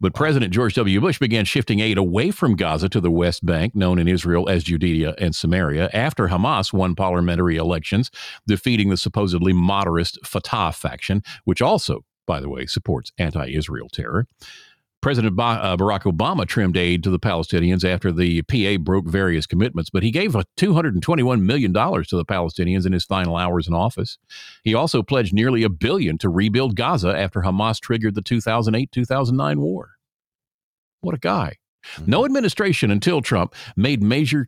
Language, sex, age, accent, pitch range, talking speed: English, male, 50-69, American, 90-120 Hz, 165 wpm